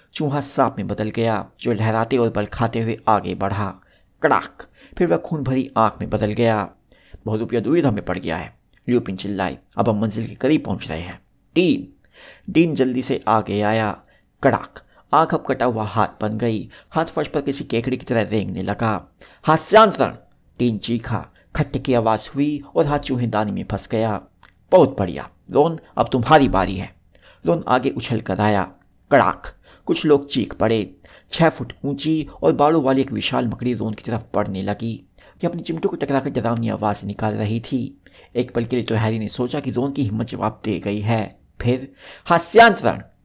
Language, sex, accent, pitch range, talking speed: Hindi, male, native, 105-135 Hz, 185 wpm